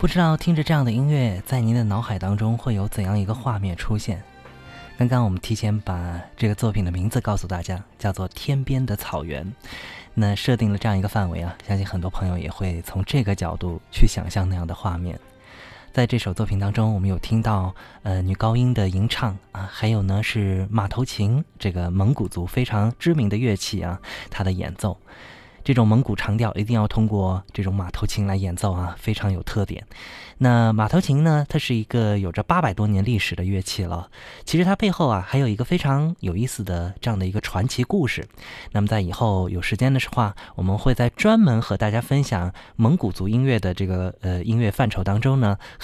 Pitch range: 95-120 Hz